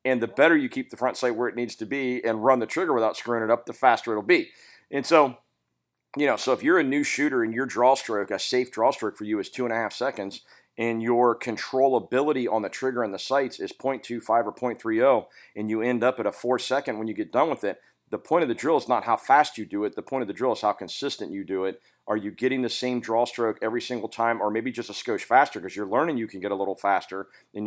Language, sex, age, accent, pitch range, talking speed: English, male, 40-59, American, 105-125 Hz, 275 wpm